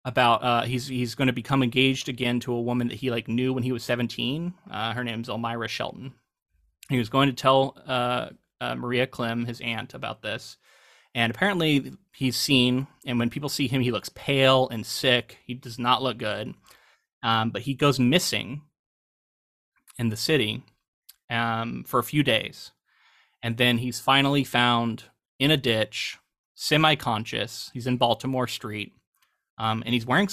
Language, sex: English, male